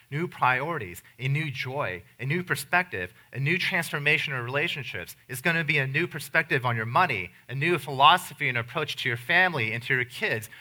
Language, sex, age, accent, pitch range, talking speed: English, male, 30-49, American, 115-145 Hz, 200 wpm